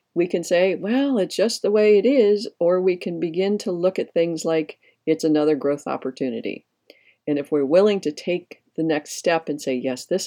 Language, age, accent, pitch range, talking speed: English, 50-69, American, 140-185 Hz, 210 wpm